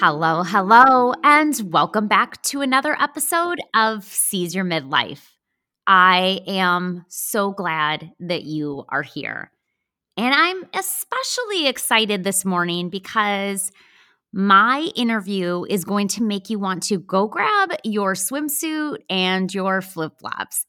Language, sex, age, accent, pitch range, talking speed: English, female, 20-39, American, 185-255 Hz, 125 wpm